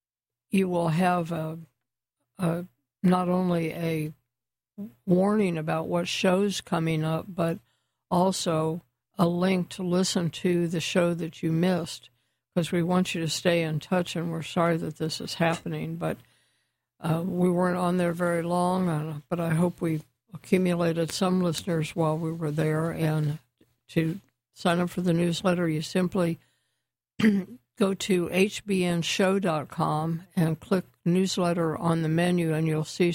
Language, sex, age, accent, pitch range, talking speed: English, female, 60-79, American, 155-180 Hz, 145 wpm